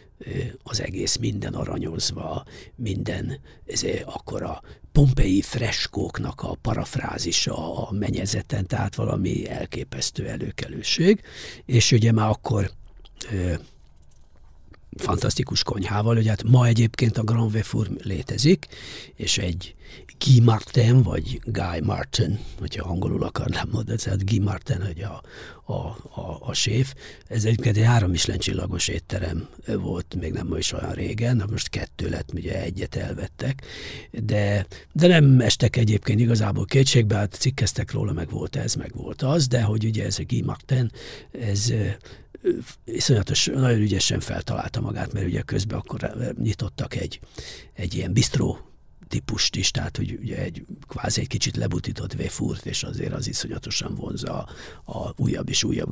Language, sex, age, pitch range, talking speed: English, male, 60-79, 95-125 Hz, 140 wpm